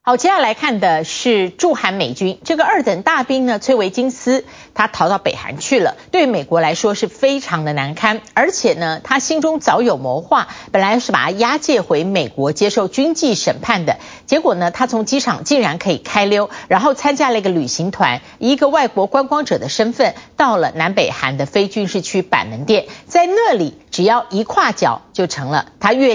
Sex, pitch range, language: female, 185-260 Hz, Chinese